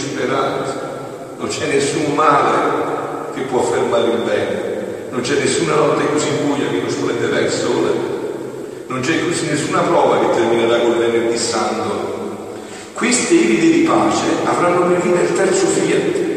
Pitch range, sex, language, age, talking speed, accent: 280-420 Hz, male, Italian, 50-69, 150 wpm, native